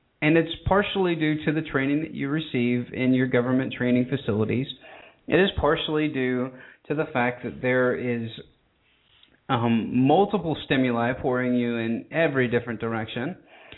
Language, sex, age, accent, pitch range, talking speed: English, male, 30-49, American, 125-170 Hz, 150 wpm